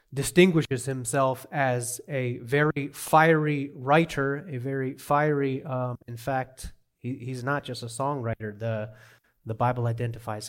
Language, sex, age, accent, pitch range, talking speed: English, male, 30-49, American, 115-135 Hz, 125 wpm